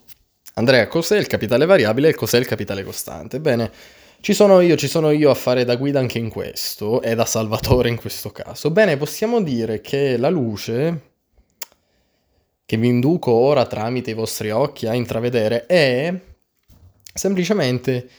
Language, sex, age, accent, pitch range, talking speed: Italian, male, 20-39, native, 115-150 Hz, 150 wpm